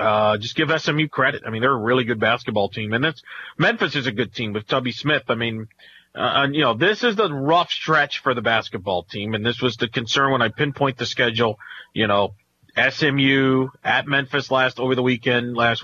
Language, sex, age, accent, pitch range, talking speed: English, male, 40-59, American, 115-150 Hz, 210 wpm